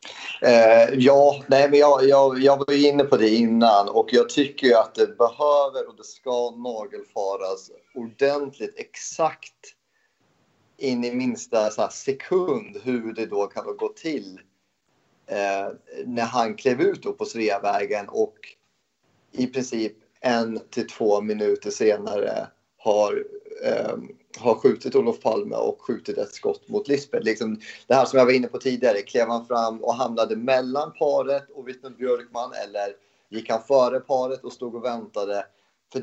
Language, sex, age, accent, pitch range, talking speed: Swedish, male, 30-49, native, 115-185 Hz, 155 wpm